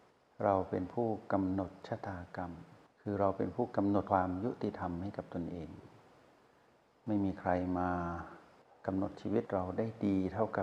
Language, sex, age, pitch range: Thai, male, 60-79, 90-110 Hz